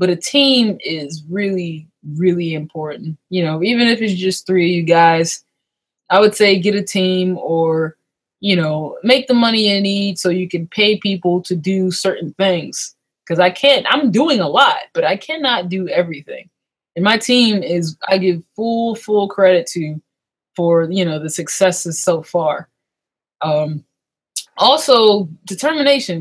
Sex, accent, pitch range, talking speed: female, American, 170-215 Hz, 165 wpm